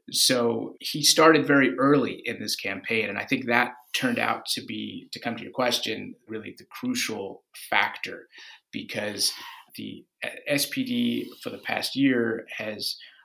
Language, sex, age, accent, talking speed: English, male, 30-49, American, 150 wpm